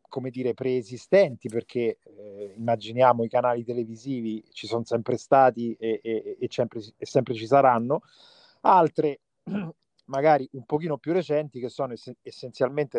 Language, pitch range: Italian, 115-150 Hz